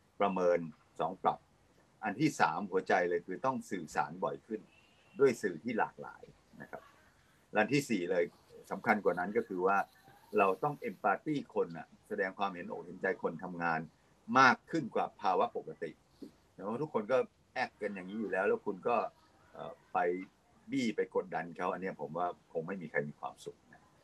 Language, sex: Thai, male